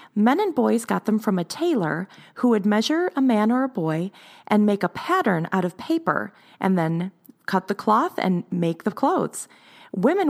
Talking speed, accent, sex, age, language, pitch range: 190 wpm, American, female, 30-49, English, 175-235 Hz